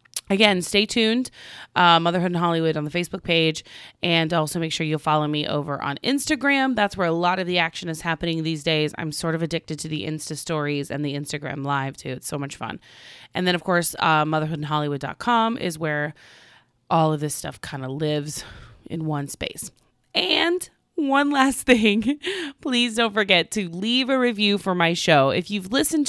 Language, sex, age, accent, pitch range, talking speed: English, female, 30-49, American, 155-225 Hz, 195 wpm